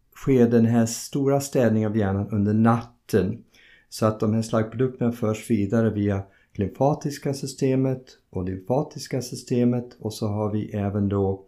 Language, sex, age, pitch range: Swedish, male, 50-69, 100-125 Hz